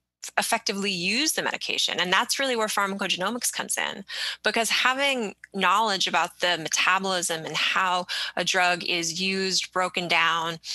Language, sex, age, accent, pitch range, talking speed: English, female, 20-39, American, 175-215 Hz, 140 wpm